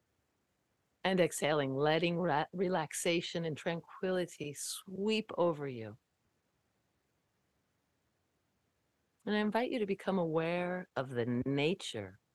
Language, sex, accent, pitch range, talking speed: English, female, American, 120-165 Hz, 90 wpm